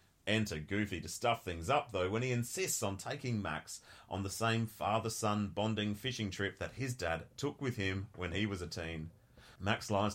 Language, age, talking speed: English, 30-49, 195 wpm